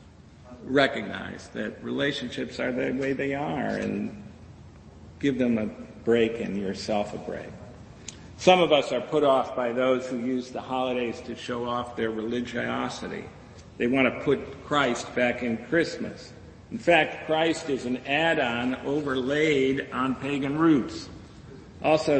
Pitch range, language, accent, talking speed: 120-140 Hz, English, American, 145 wpm